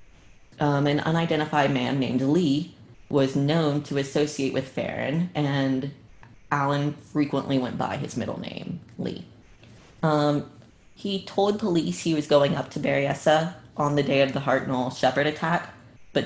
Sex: female